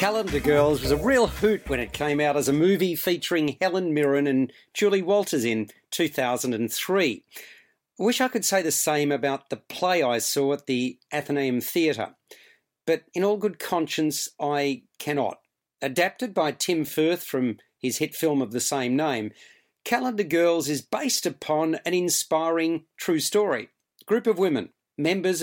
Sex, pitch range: male, 145-190 Hz